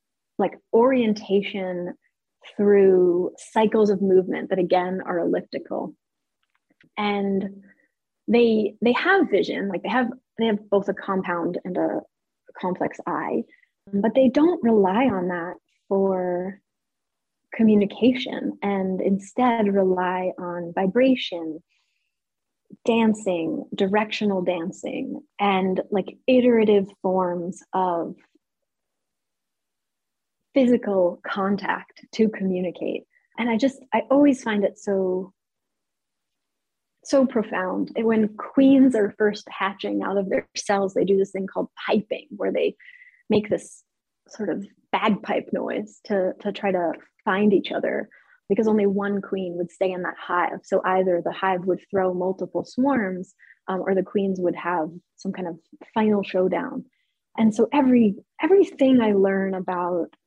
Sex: female